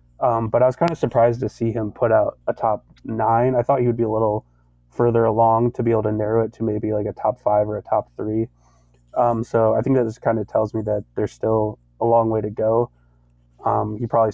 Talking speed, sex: 255 wpm, male